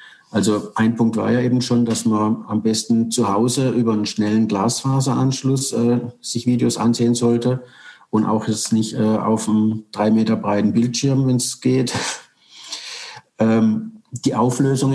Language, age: German, 50-69